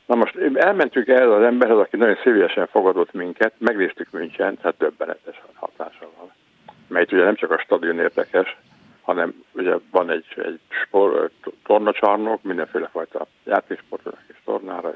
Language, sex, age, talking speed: Hungarian, male, 50-69, 150 wpm